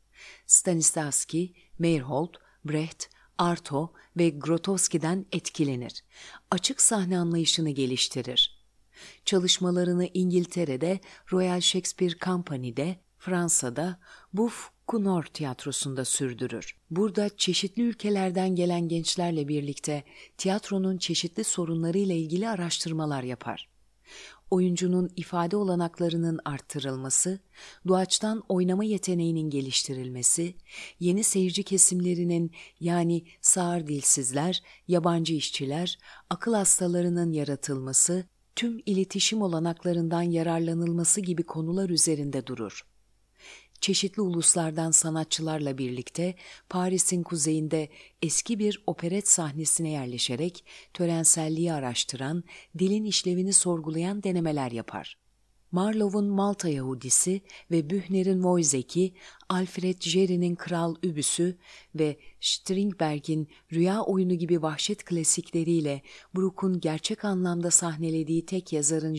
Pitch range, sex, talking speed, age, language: 155-185 Hz, female, 90 wpm, 40-59, Turkish